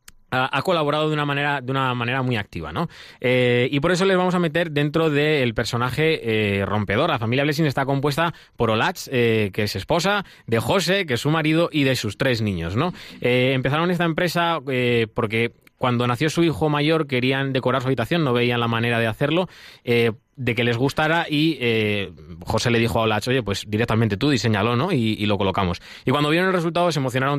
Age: 20-39